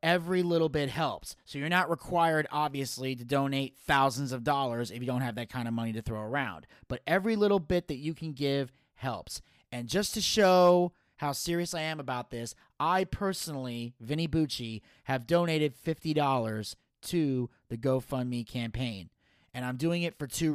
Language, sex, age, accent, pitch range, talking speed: English, male, 30-49, American, 130-170 Hz, 180 wpm